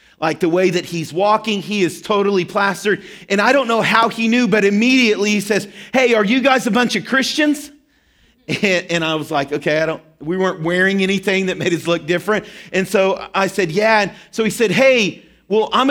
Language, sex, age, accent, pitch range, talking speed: English, male, 40-59, American, 170-220 Hz, 220 wpm